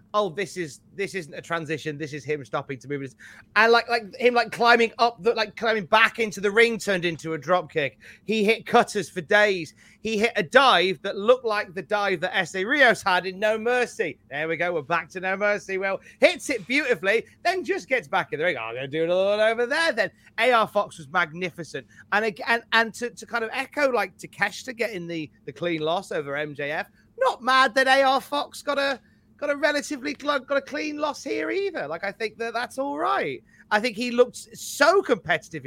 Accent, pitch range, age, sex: British, 175-270 Hz, 30-49, male